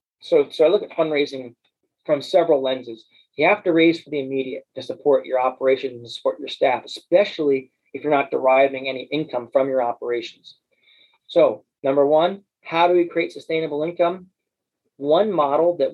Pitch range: 135-165 Hz